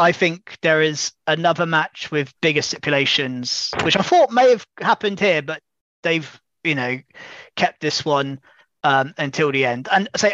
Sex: male